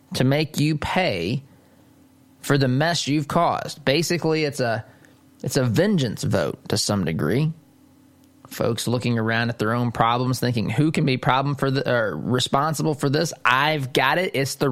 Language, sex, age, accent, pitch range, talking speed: English, male, 20-39, American, 125-150 Hz, 170 wpm